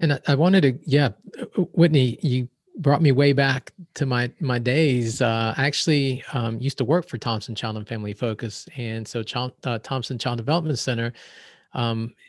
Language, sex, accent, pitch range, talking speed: English, male, American, 115-140 Hz, 175 wpm